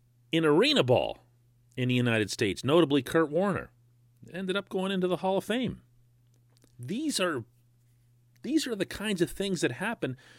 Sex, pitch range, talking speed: male, 120-175 Hz, 155 wpm